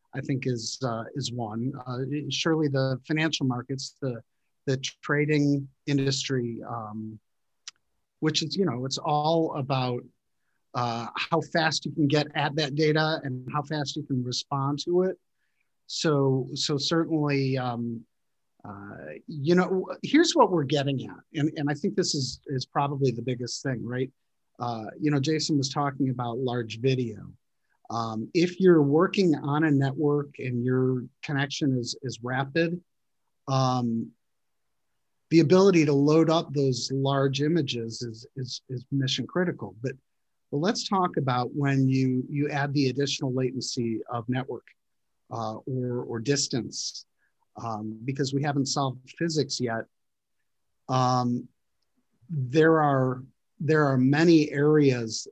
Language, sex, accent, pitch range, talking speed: English, male, American, 125-150 Hz, 140 wpm